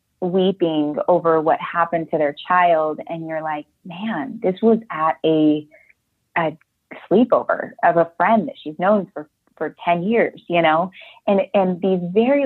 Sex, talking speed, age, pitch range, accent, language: female, 160 wpm, 30-49, 170-220 Hz, American, English